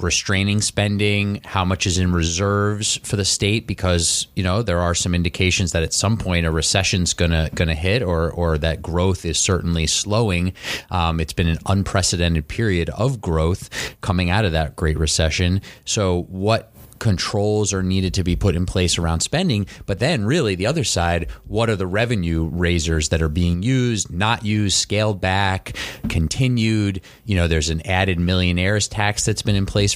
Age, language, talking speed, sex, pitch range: 30-49, English, 185 wpm, male, 85-100 Hz